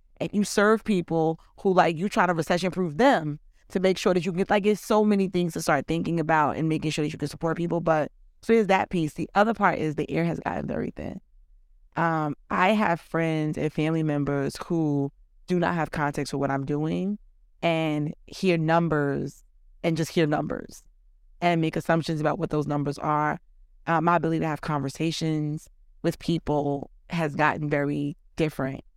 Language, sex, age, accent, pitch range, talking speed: English, female, 20-39, American, 150-175 Hz, 190 wpm